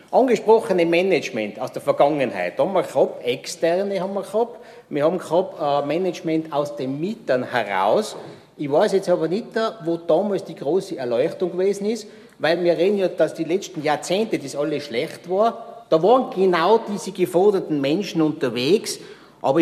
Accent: Austrian